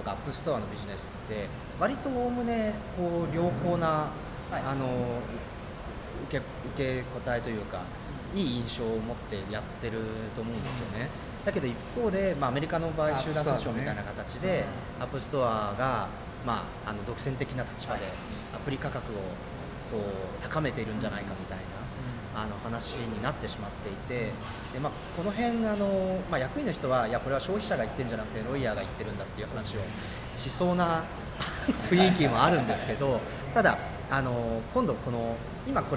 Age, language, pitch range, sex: 30-49, Japanese, 115-165 Hz, male